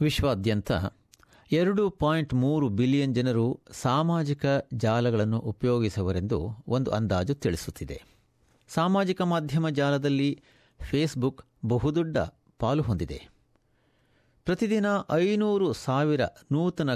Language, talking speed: Kannada, 80 wpm